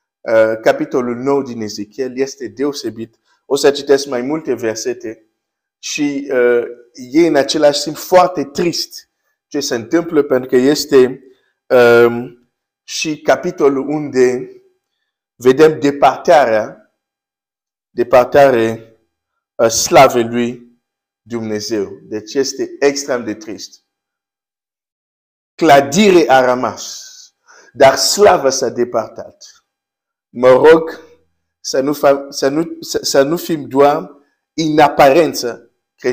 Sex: male